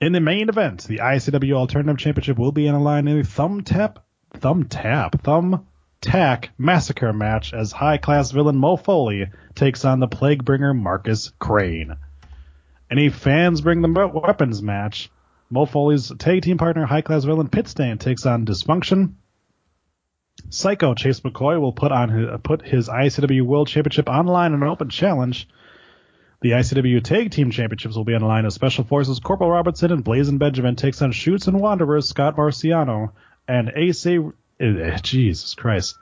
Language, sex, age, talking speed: English, male, 30-49, 170 wpm